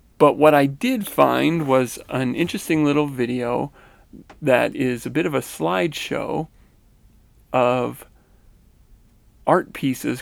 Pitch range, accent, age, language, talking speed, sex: 110-145 Hz, American, 40-59, English, 115 wpm, male